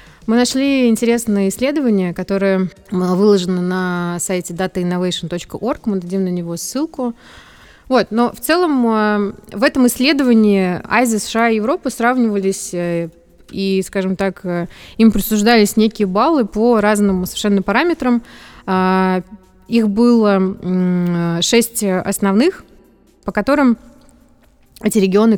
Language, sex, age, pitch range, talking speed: Russian, female, 20-39, 180-220 Hz, 105 wpm